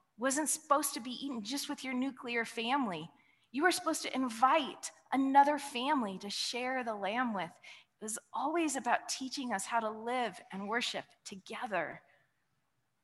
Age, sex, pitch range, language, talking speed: 20-39, female, 225-285 Hz, English, 155 wpm